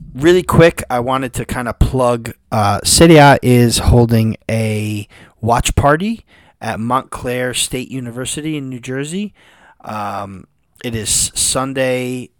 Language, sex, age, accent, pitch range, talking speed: English, male, 30-49, American, 110-130 Hz, 125 wpm